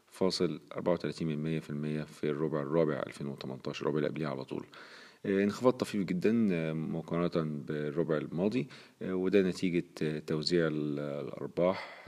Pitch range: 75-85 Hz